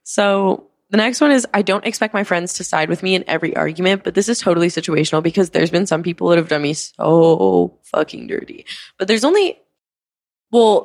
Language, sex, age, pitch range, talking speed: English, female, 20-39, 160-200 Hz, 210 wpm